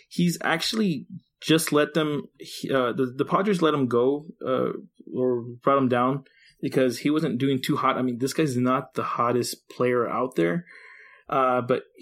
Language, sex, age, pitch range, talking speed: English, male, 20-39, 120-155 Hz, 175 wpm